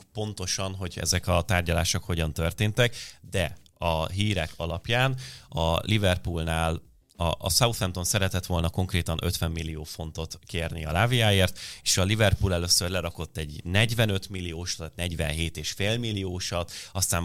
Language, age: Hungarian, 30-49